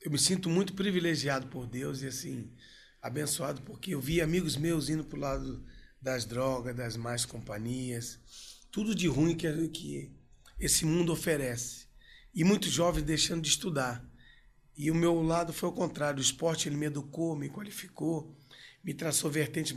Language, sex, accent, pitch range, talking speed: Portuguese, male, Brazilian, 130-165 Hz, 165 wpm